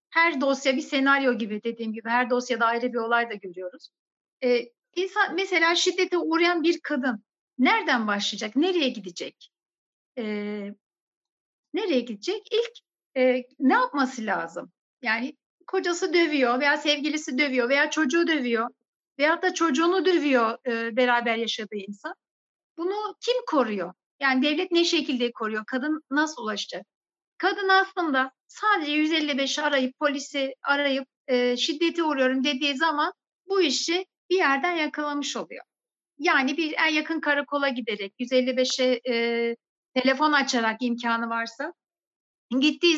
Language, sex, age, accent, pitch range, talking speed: Turkish, female, 60-79, native, 240-320 Hz, 130 wpm